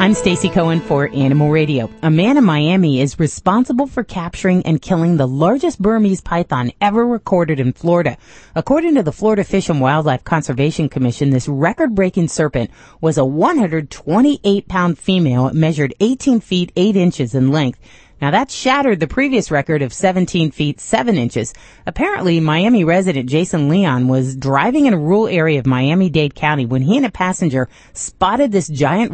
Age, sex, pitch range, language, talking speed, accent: 30-49, female, 135-195 Hz, English, 165 wpm, American